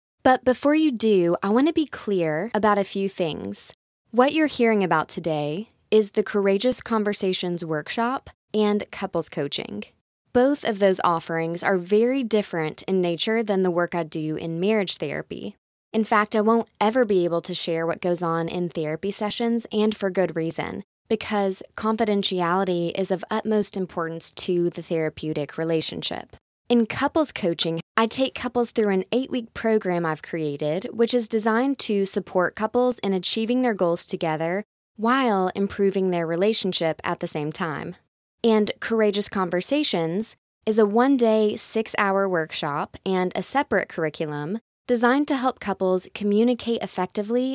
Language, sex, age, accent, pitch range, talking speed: English, female, 20-39, American, 175-225 Hz, 155 wpm